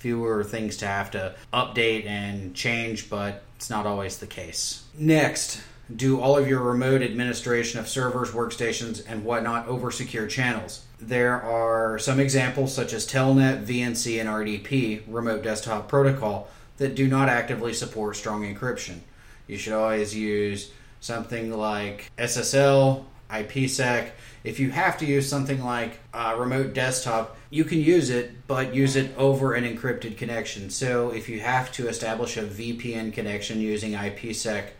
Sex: male